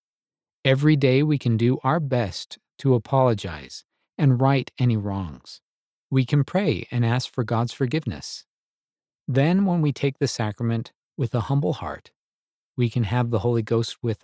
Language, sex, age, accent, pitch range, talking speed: English, male, 50-69, American, 110-140 Hz, 160 wpm